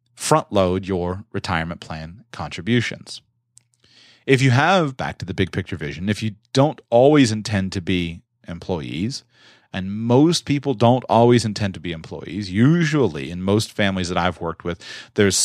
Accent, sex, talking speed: American, male, 160 wpm